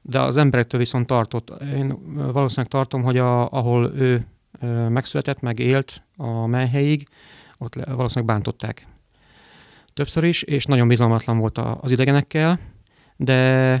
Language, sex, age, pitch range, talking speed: Hungarian, male, 30-49, 120-140 Hz, 120 wpm